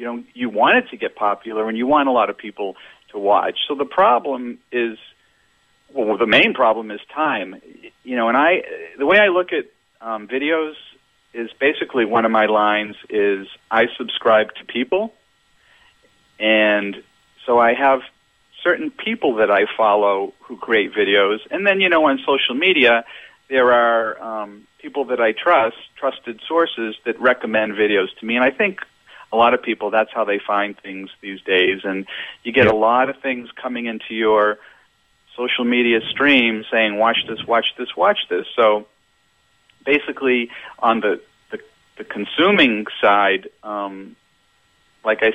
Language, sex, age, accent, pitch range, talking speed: English, male, 40-59, American, 105-125 Hz, 170 wpm